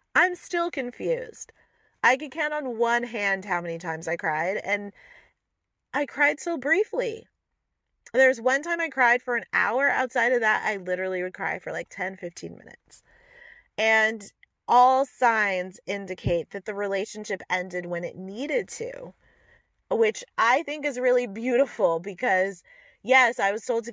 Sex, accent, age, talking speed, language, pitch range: female, American, 30-49, 160 wpm, English, 185-255 Hz